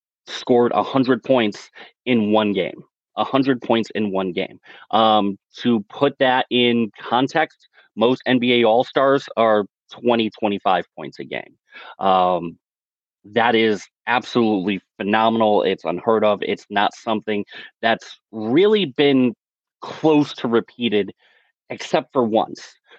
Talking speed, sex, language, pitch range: 125 wpm, male, English, 105-140 Hz